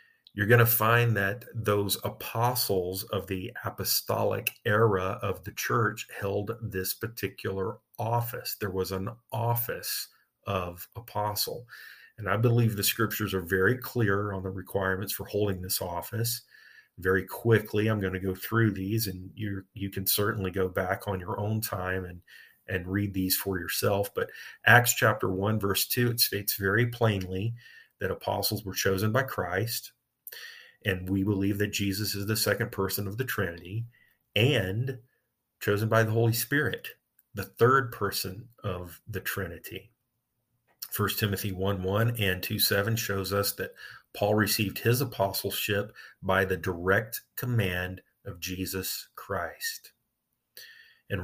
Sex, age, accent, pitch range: male, 40-59, American, 95-115 Hz